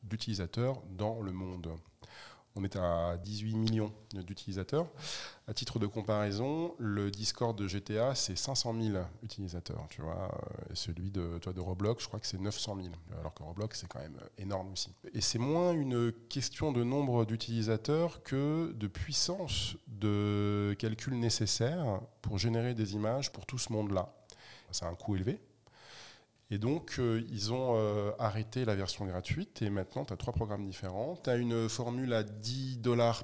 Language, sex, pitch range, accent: French, male, 100-125 Hz, French